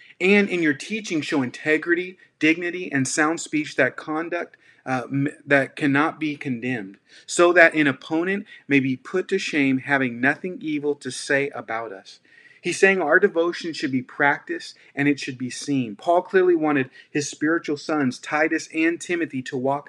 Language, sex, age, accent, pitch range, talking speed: English, male, 30-49, American, 135-175 Hz, 170 wpm